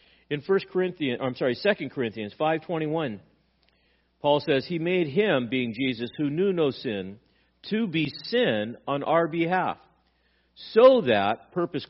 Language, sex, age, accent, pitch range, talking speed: English, male, 50-69, American, 120-180 Hz, 145 wpm